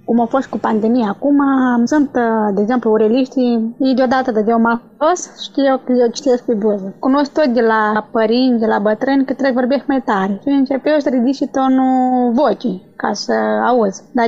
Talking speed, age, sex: 195 wpm, 20-39, female